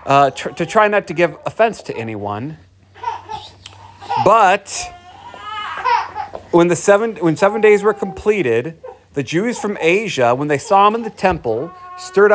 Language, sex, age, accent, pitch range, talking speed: English, male, 30-49, American, 145-225 Hz, 150 wpm